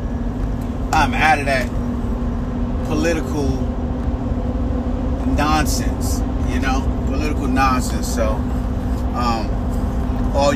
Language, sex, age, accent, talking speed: English, male, 30-49, American, 75 wpm